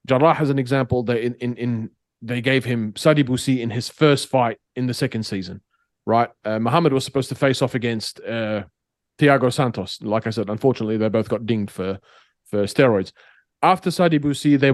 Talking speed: 195 wpm